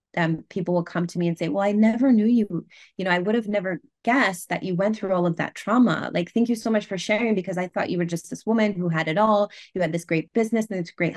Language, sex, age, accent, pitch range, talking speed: English, female, 20-39, American, 170-215 Hz, 295 wpm